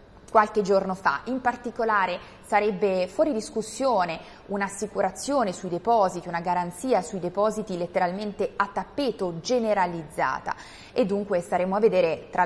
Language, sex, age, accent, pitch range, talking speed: Italian, female, 20-39, native, 170-210 Hz, 120 wpm